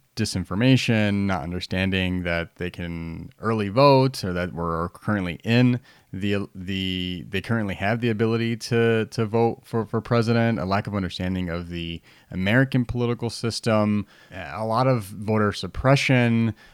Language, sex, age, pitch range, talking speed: English, male, 30-49, 90-115 Hz, 145 wpm